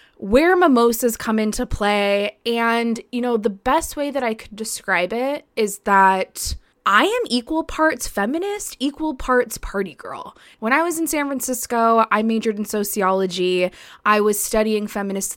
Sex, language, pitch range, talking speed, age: female, English, 225-310 Hz, 160 wpm, 20-39